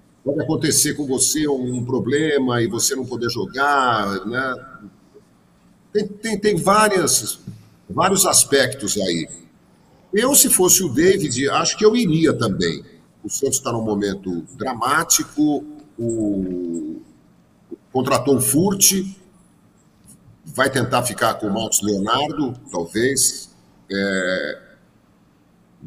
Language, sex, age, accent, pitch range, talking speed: Portuguese, male, 50-69, Brazilian, 100-140 Hz, 115 wpm